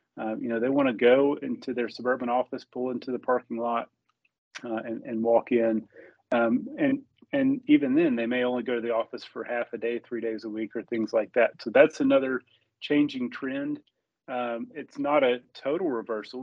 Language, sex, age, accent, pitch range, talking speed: English, male, 30-49, American, 115-145 Hz, 200 wpm